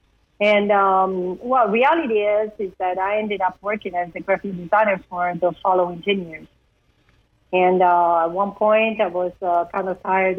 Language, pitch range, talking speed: English, 180-205 Hz, 180 wpm